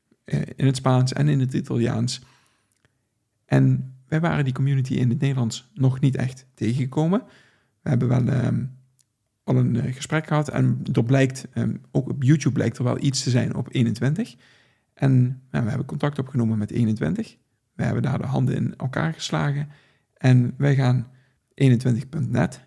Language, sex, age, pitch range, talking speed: Dutch, male, 50-69, 120-140 Hz, 160 wpm